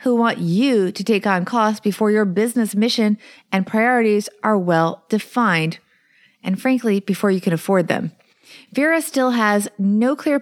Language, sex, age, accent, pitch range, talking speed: English, female, 30-49, American, 200-255 Hz, 155 wpm